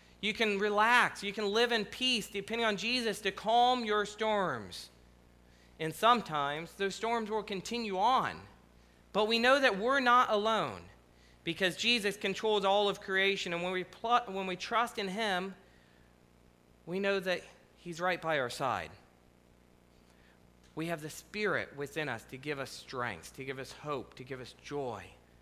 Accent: American